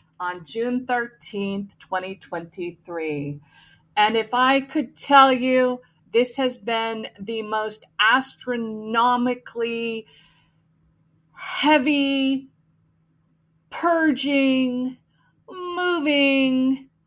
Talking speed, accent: 65 wpm, American